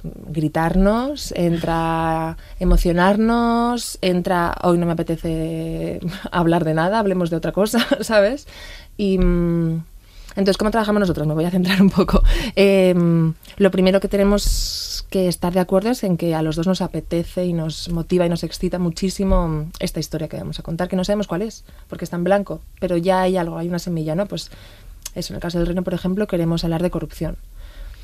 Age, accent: 20-39, Spanish